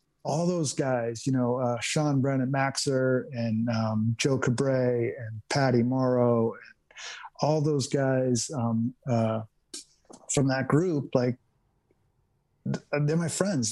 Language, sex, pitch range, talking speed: English, male, 125-150 Hz, 120 wpm